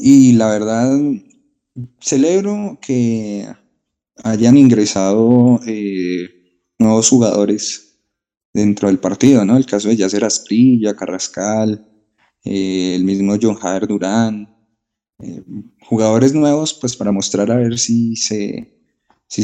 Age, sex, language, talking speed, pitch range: 20-39, male, Spanish, 115 wpm, 105-120 Hz